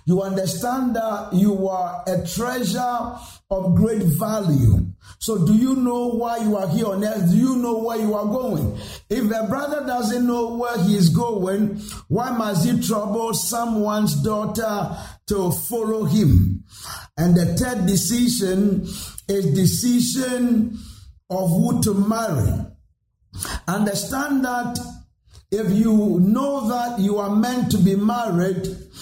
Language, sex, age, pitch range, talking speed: English, male, 50-69, 185-235 Hz, 140 wpm